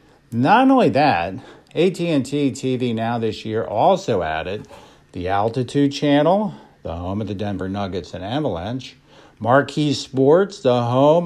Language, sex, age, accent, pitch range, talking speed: English, male, 50-69, American, 120-165 Hz, 135 wpm